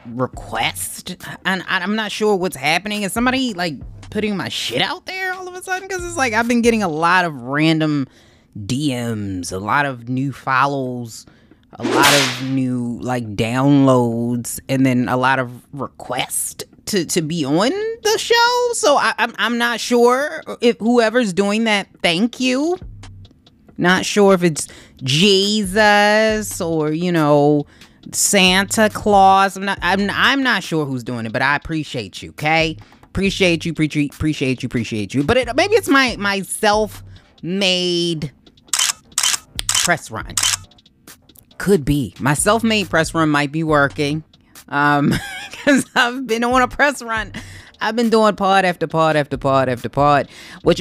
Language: English